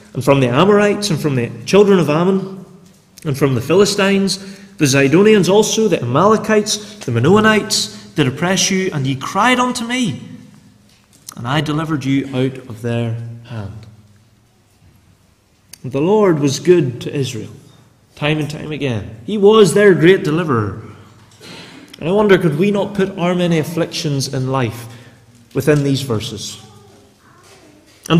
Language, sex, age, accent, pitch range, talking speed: English, male, 30-49, British, 130-200 Hz, 145 wpm